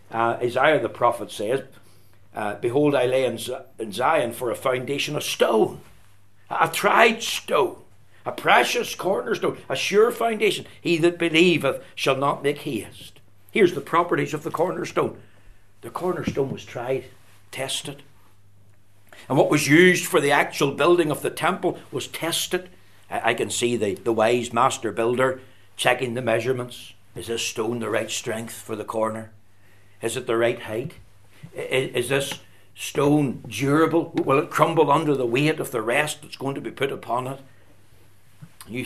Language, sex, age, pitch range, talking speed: English, male, 60-79, 110-135 Hz, 160 wpm